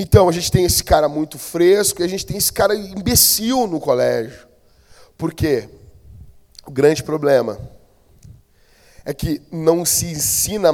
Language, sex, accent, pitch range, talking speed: Portuguese, male, Brazilian, 130-205 Hz, 150 wpm